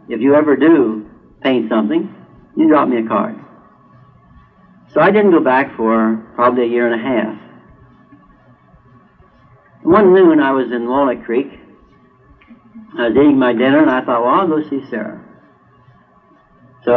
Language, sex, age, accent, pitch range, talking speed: English, male, 60-79, American, 120-195 Hz, 155 wpm